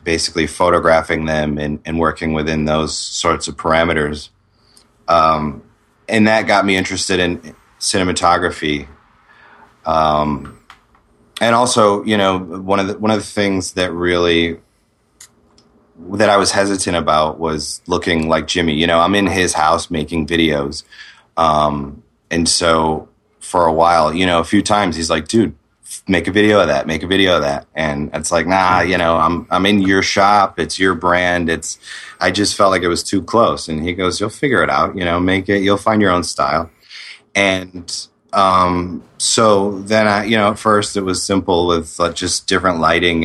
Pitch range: 80-95 Hz